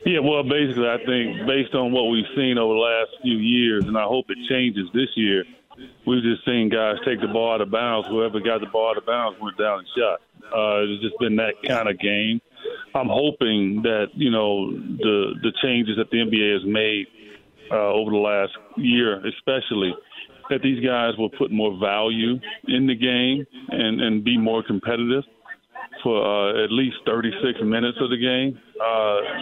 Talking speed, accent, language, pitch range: 195 wpm, American, English, 105-125 Hz